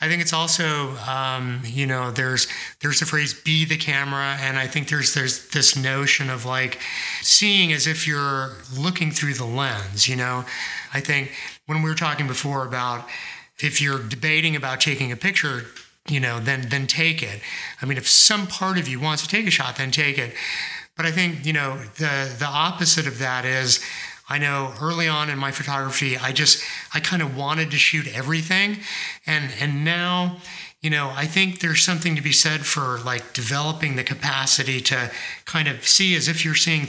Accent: American